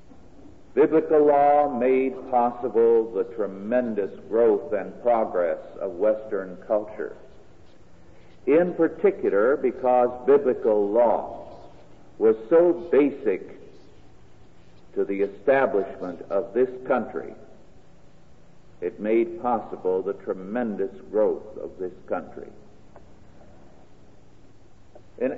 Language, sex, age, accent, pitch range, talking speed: English, male, 60-79, American, 105-160 Hz, 85 wpm